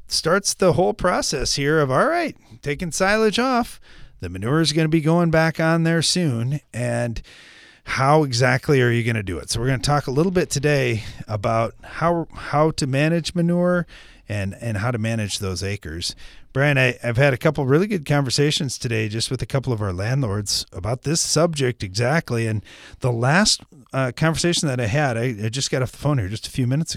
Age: 30-49